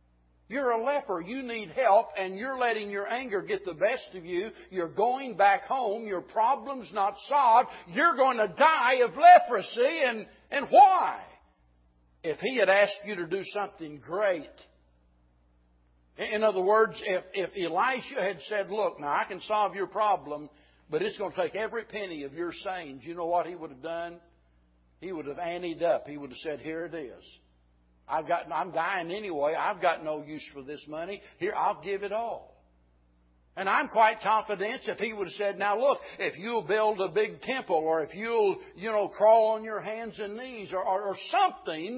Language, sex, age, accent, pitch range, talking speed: English, male, 60-79, American, 155-255 Hz, 195 wpm